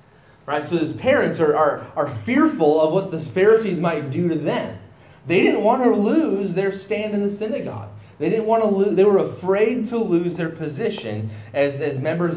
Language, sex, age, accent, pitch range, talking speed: English, male, 30-49, American, 135-195 Hz, 200 wpm